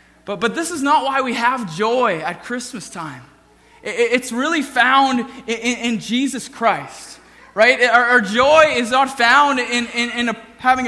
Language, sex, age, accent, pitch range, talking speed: English, male, 20-39, American, 215-265 Hz, 170 wpm